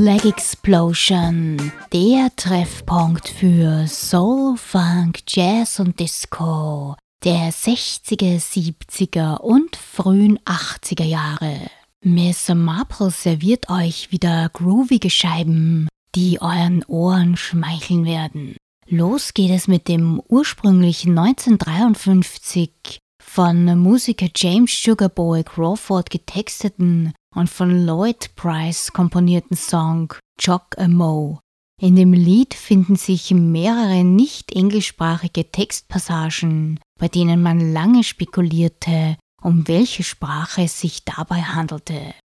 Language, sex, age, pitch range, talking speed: German, female, 20-39, 165-190 Hz, 100 wpm